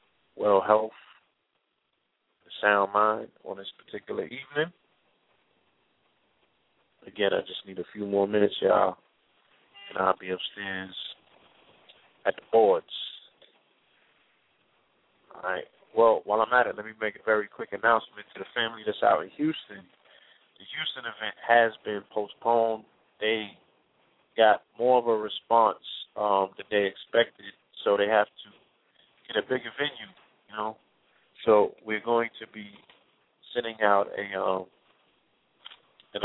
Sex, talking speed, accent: male, 135 wpm, American